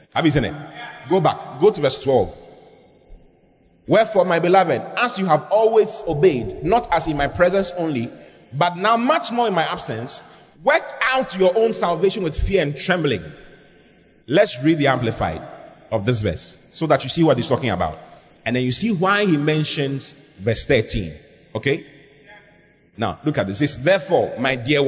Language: English